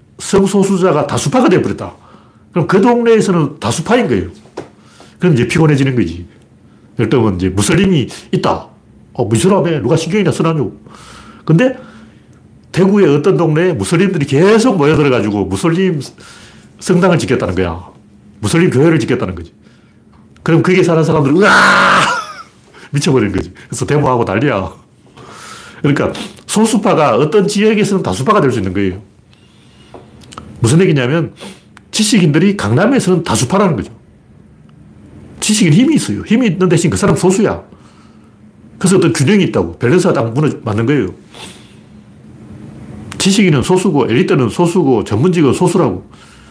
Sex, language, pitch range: male, Korean, 120-190 Hz